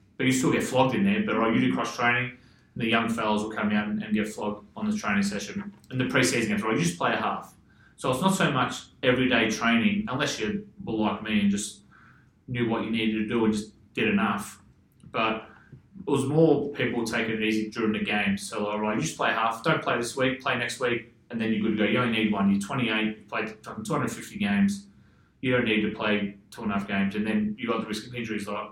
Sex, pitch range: male, 105-120 Hz